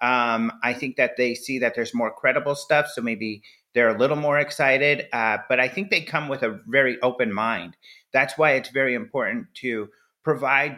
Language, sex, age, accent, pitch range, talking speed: English, male, 30-49, American, 115-150 Hz, 200 wpm